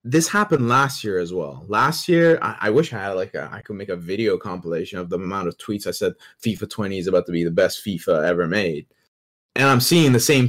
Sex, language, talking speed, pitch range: male, English, 250 wpm, 115-160 Hz